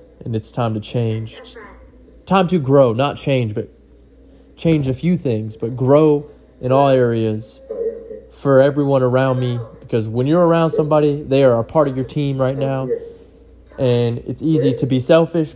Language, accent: English, American